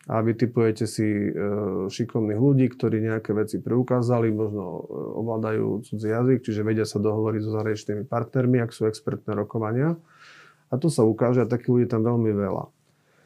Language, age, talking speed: Slovak, 40-59, 160 wpm